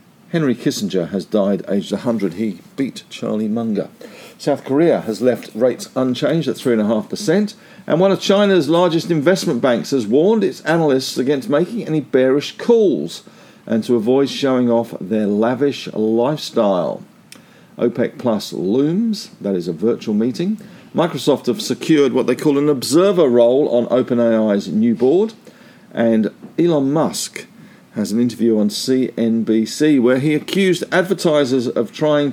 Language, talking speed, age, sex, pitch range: English, 145 wpm, 50-69, male, 115-170 Hz